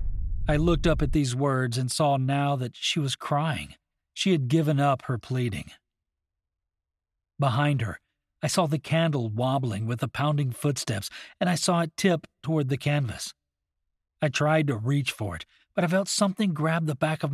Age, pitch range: 40-59, 110-155 Hz